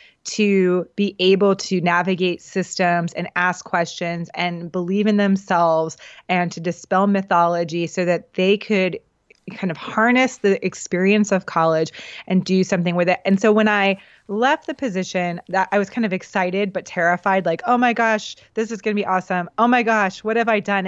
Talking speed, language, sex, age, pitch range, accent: 185 wpm, English, female, 20-39, 175-205 Hz, American